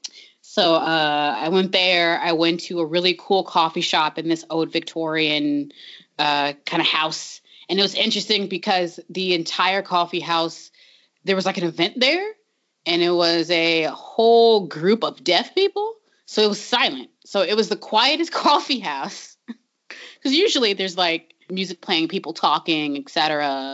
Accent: American